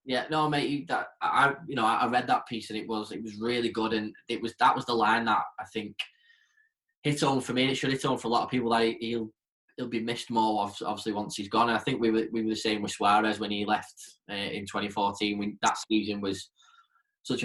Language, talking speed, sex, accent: English, 250 wpm, male, British